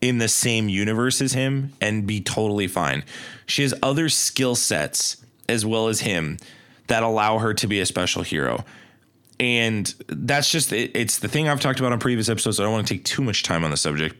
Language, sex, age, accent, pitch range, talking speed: English, male, 20-39, American, 100-135 Hz, 210 wpm